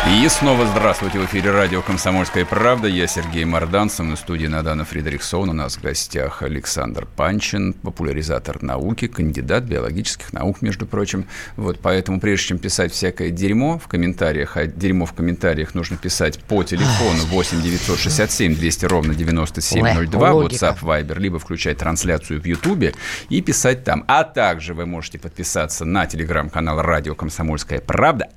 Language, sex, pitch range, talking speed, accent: Russian, male, 85-115 Hz, 150 wpm, native